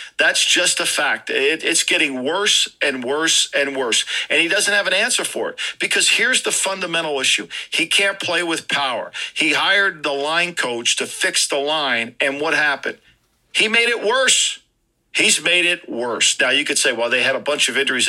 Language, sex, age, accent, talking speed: English, male, 50-69, American, 200 wpm